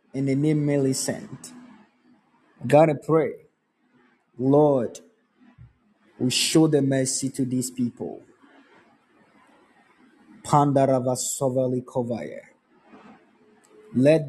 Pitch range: 130-175 Hz